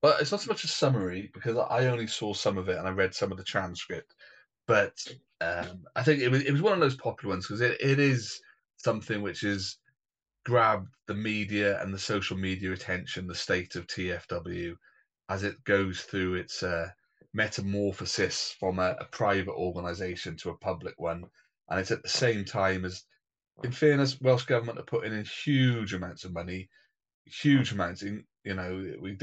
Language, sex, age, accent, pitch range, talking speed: English, male, 30-49, British, 90-120 Hz, 190 wpm